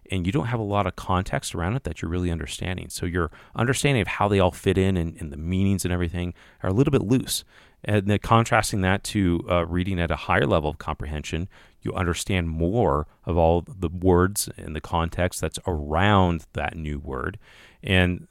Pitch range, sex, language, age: 80-100 Hz, male, English, 40-59